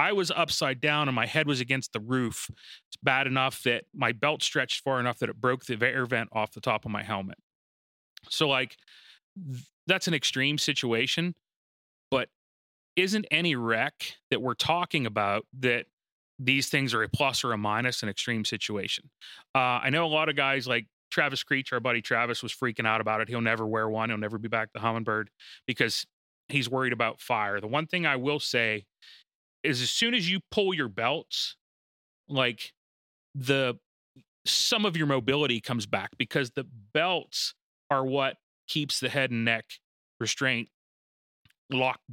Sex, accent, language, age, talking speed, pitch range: male, American, English, 30-49, 180 wpm, 115-145 Hz